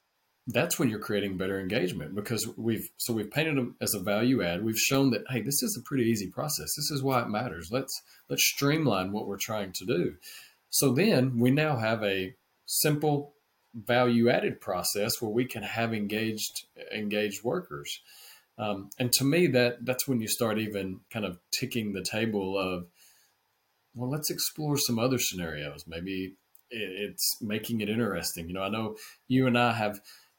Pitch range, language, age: 100-125 Hz, English, 40-59